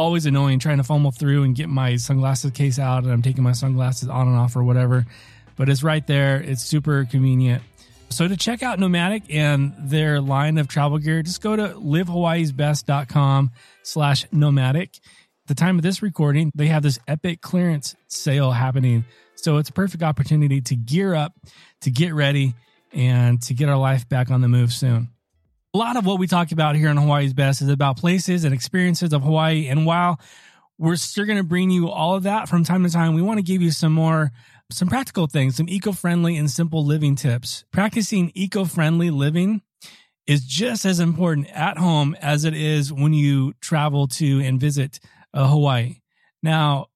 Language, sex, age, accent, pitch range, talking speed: English, male, 20-39, American, 135-170 Hz, 190 wpm